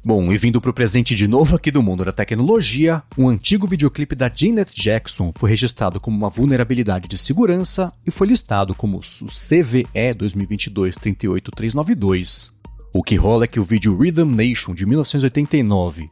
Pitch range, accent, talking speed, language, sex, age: 100-135 Hz, Brazilian, 160 wpm, Portuguese, male, 40-59